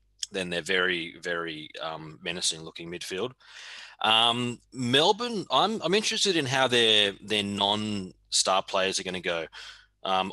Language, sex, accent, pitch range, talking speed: English, male, Australian, 85-105 Hz, 135 wpm